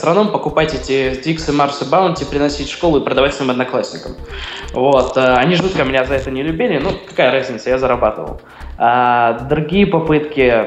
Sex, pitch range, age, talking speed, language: male, 130-165 Hz, 20-39, 170 wpm, Russian